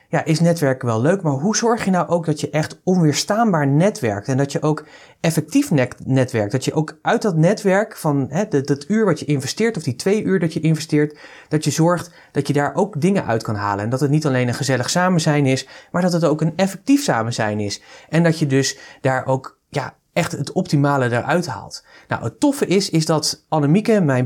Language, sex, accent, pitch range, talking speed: Dutch, male, Dutch, 140-185 Hz, 225 wpm